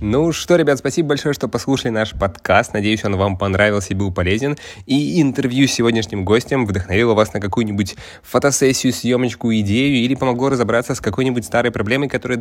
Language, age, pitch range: Russian, 20-39, 100-125 Hz